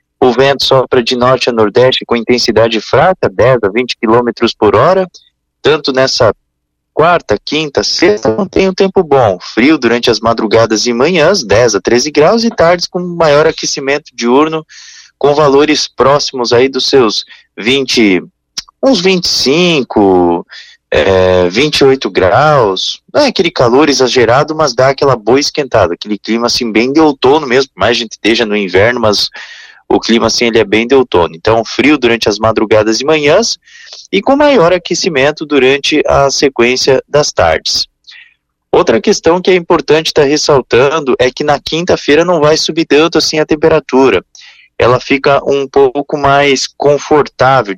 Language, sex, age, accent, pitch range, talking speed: Portuguese, male, 20-39, Brazilian, 115-155 Hz, 160 wpm